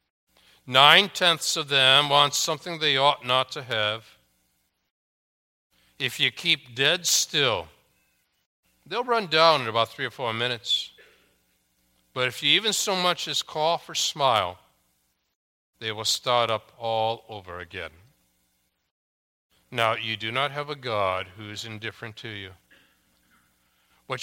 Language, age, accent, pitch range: English, 60-79, American, 110-145 Hz